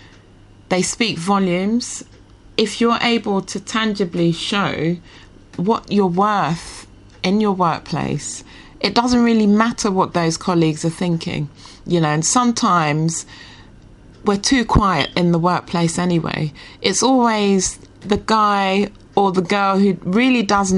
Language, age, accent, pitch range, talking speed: English, 30-49, British, 155-205 Hz, 130 wpm